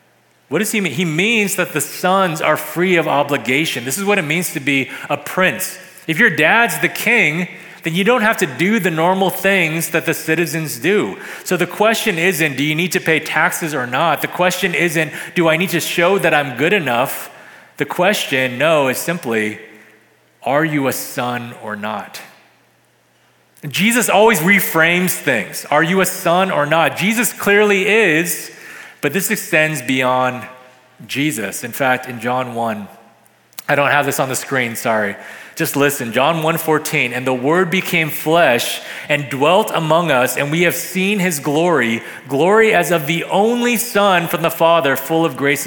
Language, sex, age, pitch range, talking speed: English, male, 30-49, 145-185 Hz, 180 wpm